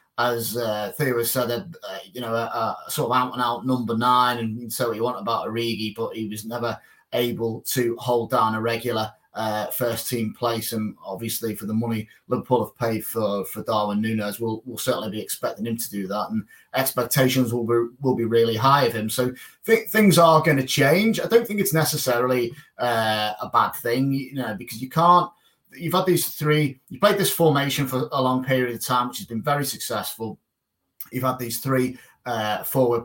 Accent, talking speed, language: British, 205 wpm, English